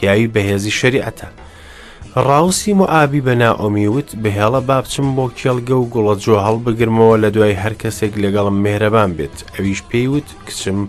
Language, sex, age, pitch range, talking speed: English, male, 30-49, 100-125 Hz, 165 wpm